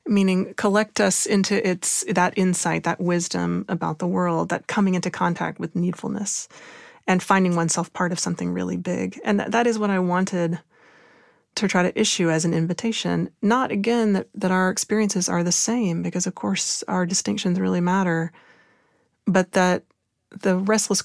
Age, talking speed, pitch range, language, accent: 30-49, 170 wpm, 175-210 Hz, English, American